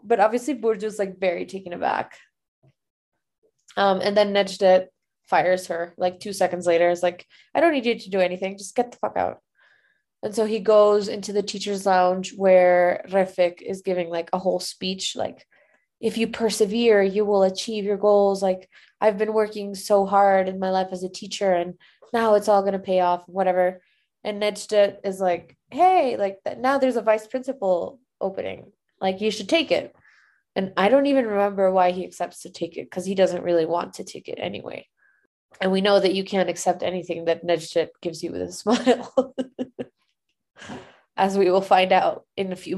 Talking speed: 195 wpm